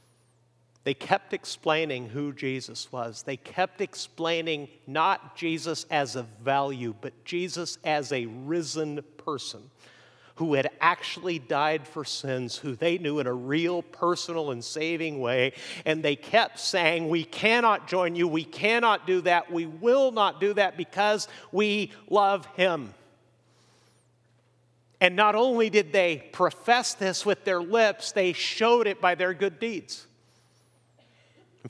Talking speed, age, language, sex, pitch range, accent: 140 wpm, 50-69, English, male, 125-175 Hz, American